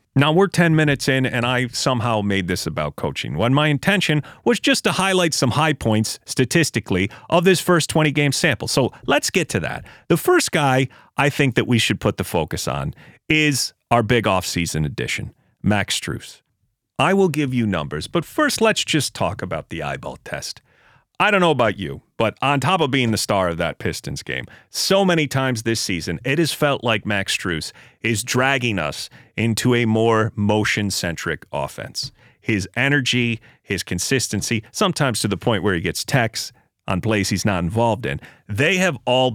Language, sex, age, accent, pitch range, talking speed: English, male, 30-49, American, 105-150 Hz, 190 wpm